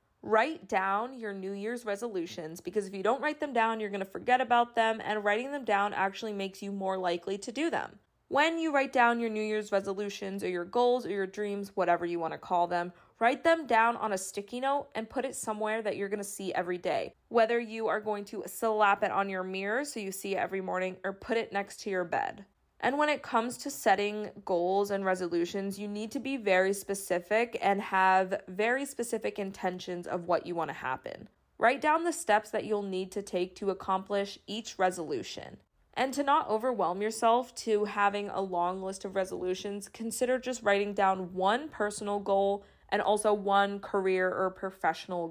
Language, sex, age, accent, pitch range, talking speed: English, female, 20-39, American, 190-225 Hz, 205 wpm